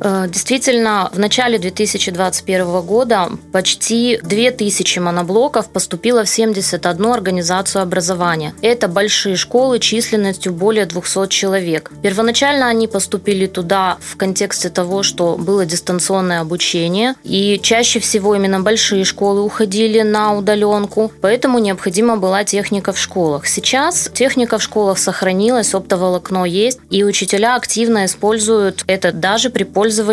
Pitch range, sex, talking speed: 185-225 Hz, female, 120 wpm